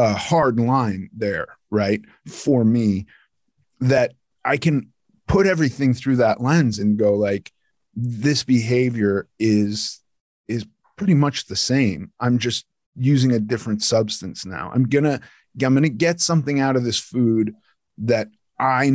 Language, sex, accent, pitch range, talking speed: English, male, American, 110-130 Hz, 145 wpm